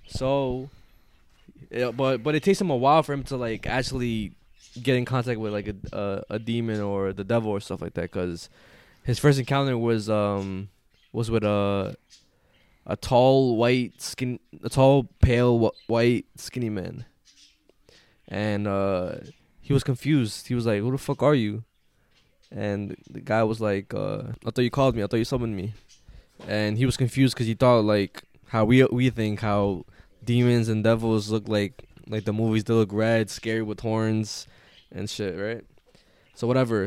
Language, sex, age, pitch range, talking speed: English, male, 10-29, 105-130 Hz, 180 wpm